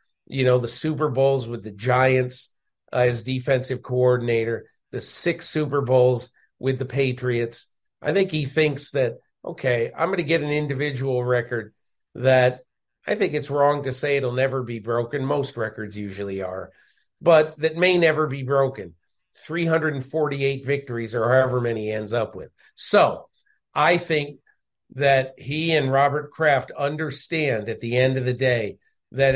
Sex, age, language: male, 50-69, English